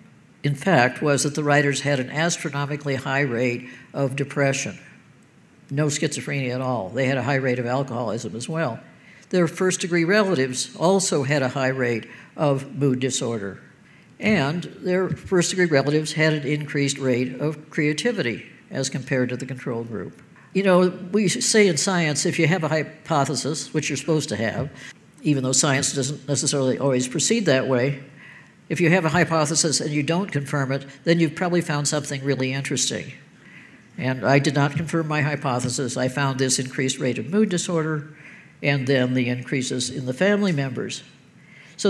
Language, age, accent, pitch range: English, 60-79, American, 135-175 Hz